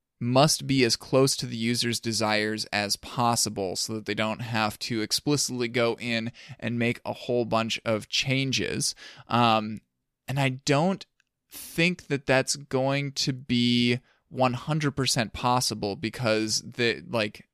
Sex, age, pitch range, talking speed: male, 20-39, 110-130 Hz, 140 wpm